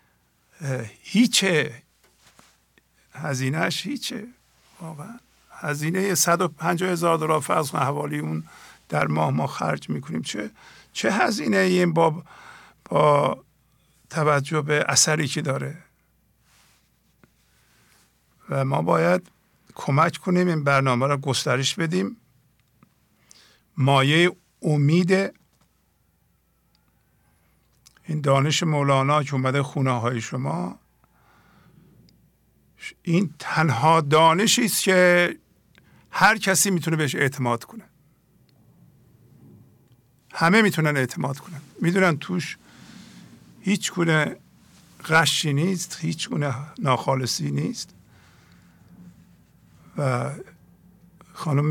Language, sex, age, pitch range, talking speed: English, male, 50-69, 135-175 Hz, 85 wpm